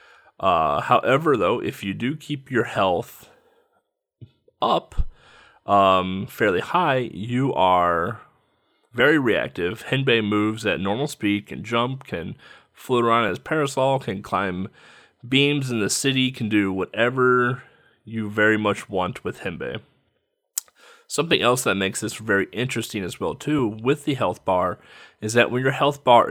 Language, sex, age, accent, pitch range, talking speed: English, male, 30-49, American, 100-135 Hz, 145 wpm